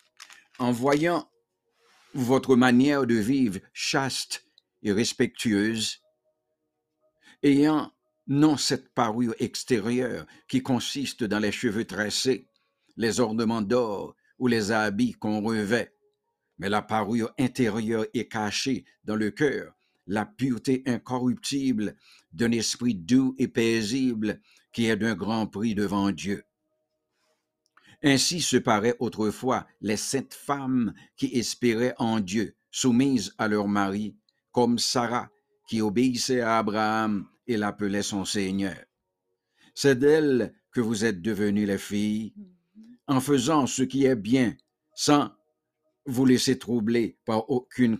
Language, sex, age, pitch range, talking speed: English, male, 60-79, 110-135 Hz, 120 wpm